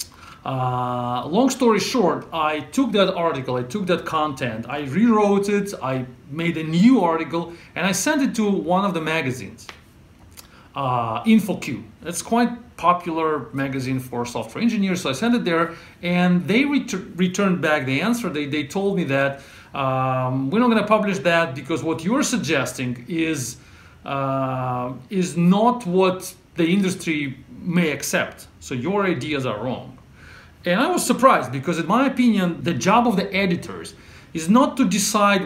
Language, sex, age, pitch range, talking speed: English, male, 40-59, 140-205 Hz, 165 wpm